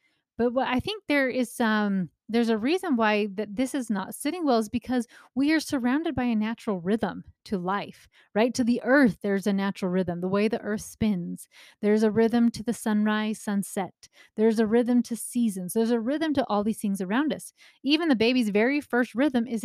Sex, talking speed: female, 210 wpm